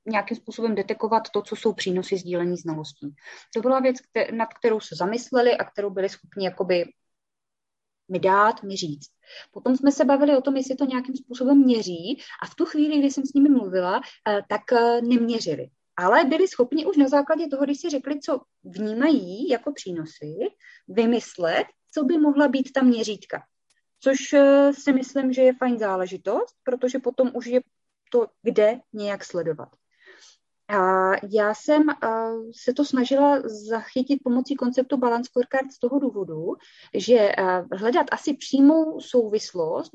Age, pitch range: 20-39, 205-265 Hz